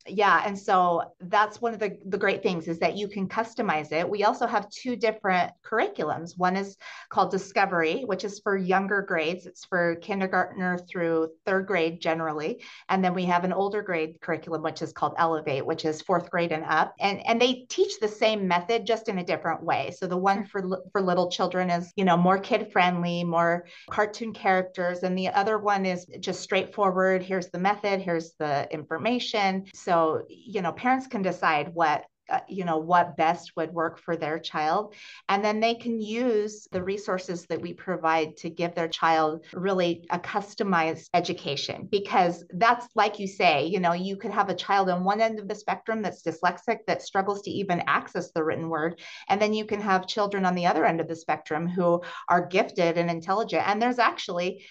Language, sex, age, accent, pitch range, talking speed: English, female, 30-49, American, 170-210 Hz, 200 wpm